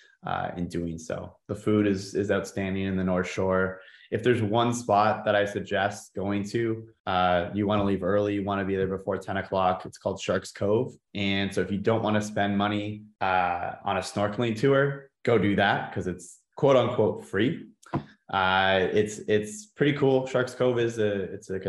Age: 20-39